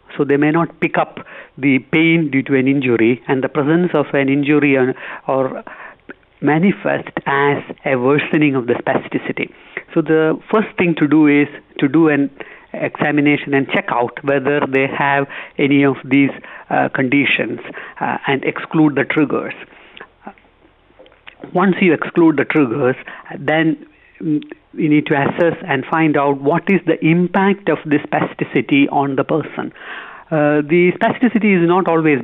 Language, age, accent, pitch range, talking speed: English, 60-79, Indian, 140-165 Hz, 155 wpm